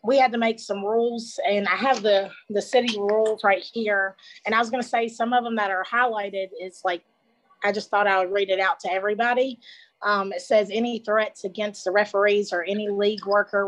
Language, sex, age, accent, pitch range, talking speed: English, female, 30-49, American, 195-225 Hz, 225 wpm